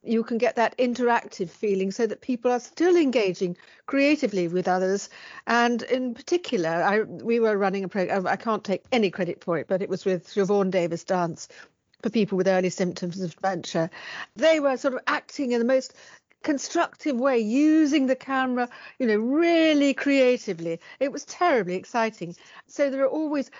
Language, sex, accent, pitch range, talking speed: English, female, British, 190-255 Hz, 180 wpm